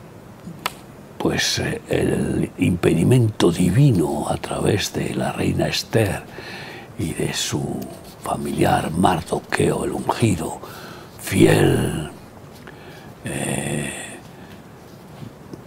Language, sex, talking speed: Spanish, male, 75 wpm